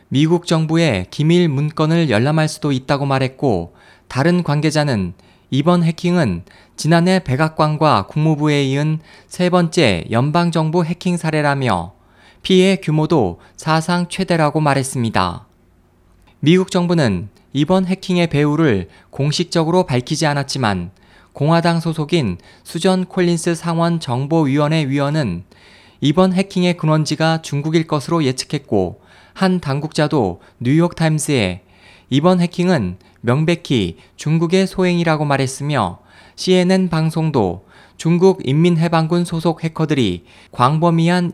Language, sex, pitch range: Korean, male, 115-170 Hz